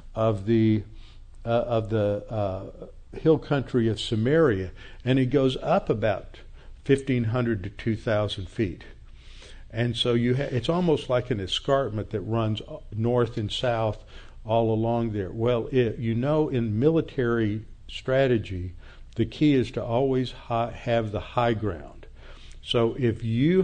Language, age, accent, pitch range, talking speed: English, 60-79, American, 105-130 Hz, 145 wpm